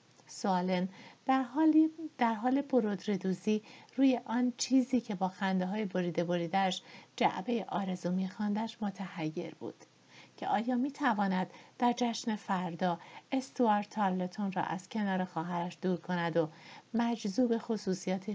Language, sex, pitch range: Persian, female, 185-230 Hz